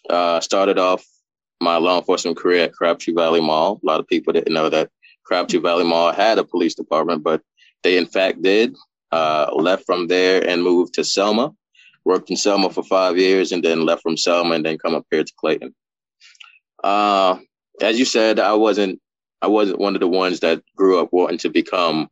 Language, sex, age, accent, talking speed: English, male, 20-39, American, 200 wpm